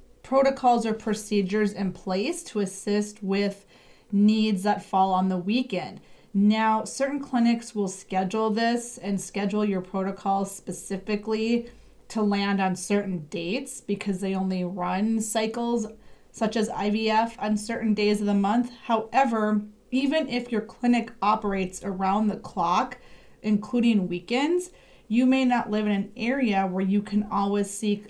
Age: 30-49